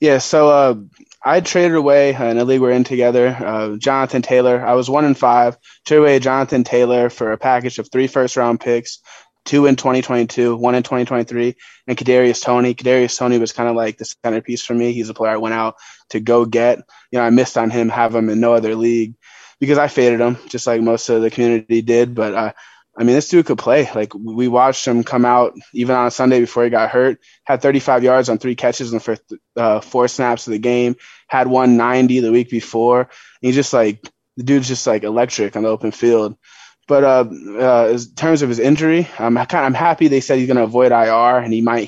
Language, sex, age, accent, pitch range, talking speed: English, male, 20-39, American, 115-130 Hz, 235 wpm